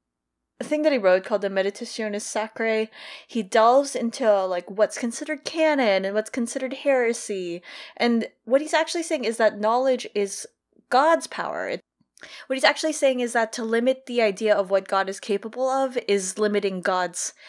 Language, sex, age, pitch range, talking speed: English, female, 20-39, 190-250 Hz, 170 wpm